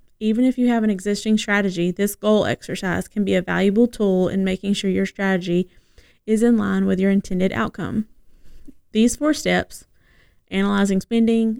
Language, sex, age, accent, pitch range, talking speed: English, female, 20-39, American, 190-225 Hz, 165 wpm